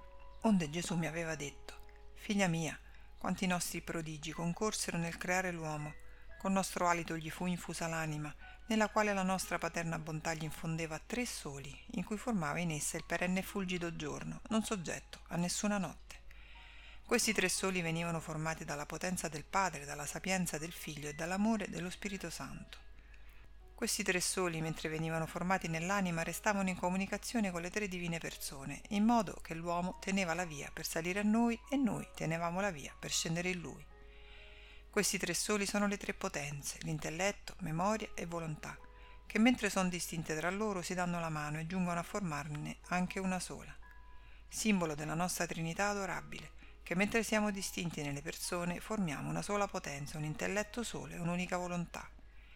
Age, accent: 50-69, native